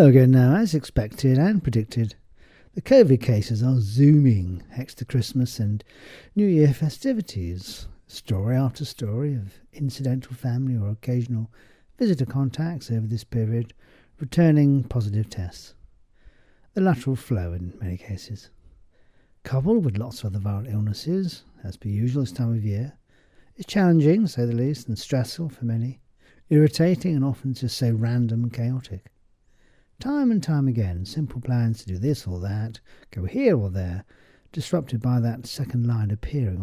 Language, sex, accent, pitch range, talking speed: English, male, British, 105-140 Hz, 150 wpm